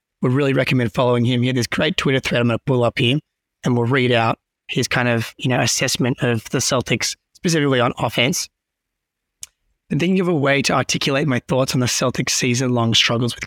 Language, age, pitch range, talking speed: English, 20-39, 125-145 Hz, 215 wpm